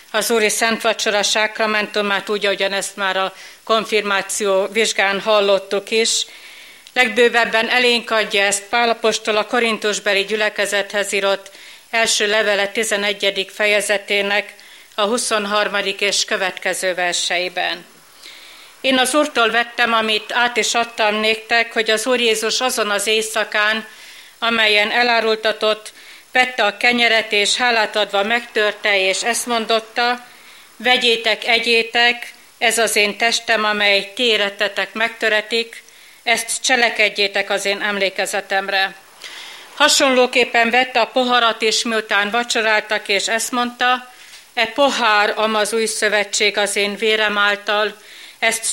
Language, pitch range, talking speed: Hungarian, 205-230 Hz, 115 wpm